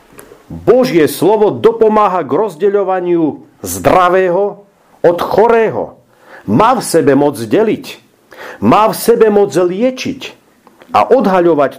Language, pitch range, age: Slovak, 140-200 Hz, 50-69